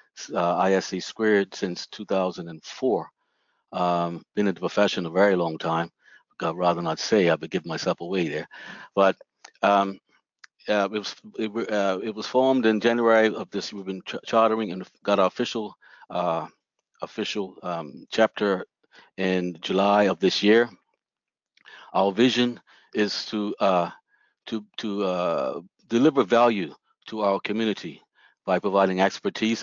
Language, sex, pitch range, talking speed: English, male, 95-110 Hz, 145 wpm